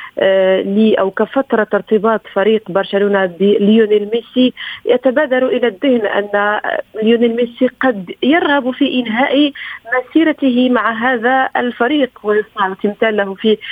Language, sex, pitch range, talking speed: Arabic, female, 205-255 Hz, 115 wpm